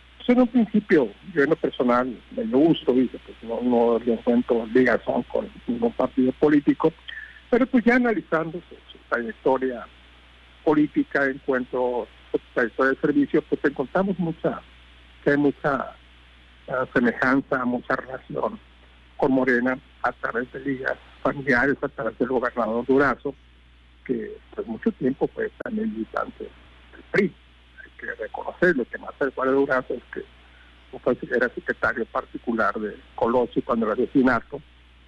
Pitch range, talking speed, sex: 110-170 Hz, 135 wpm, male